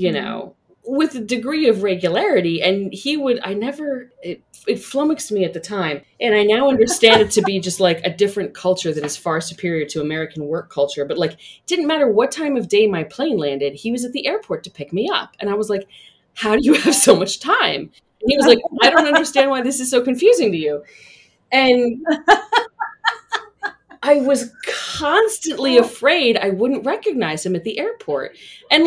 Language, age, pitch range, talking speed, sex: English, 30-49, 170-275 Hz, 200 wpm, female